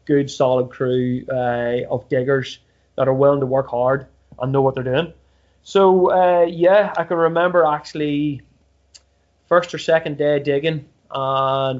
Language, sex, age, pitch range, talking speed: English, male, 20-39, 130-160 Hz, 155 wpm